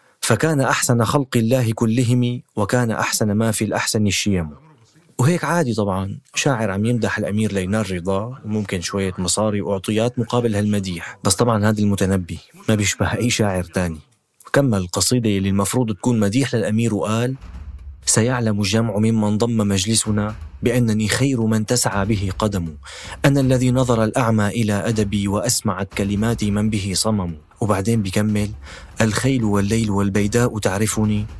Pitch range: 100-120 Hz